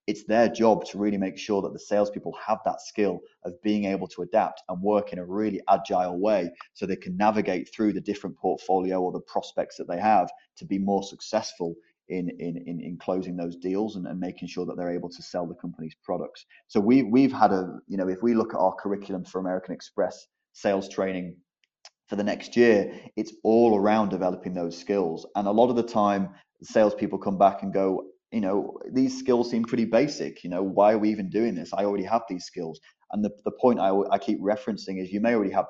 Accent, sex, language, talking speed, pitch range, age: British, male, English, 225 wpm, 90-105 Hz, 30-49